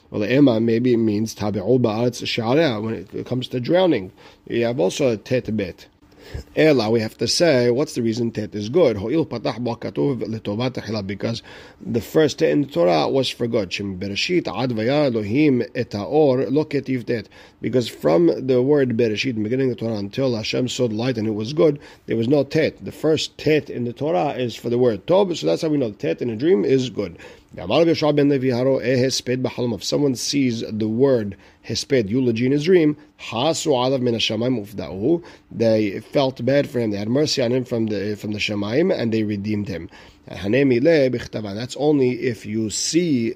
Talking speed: 160 wpm